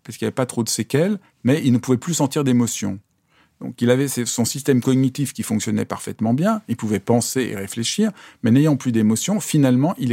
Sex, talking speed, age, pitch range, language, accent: male, 215 wpm, 40-59, 110-135 Hz, French, French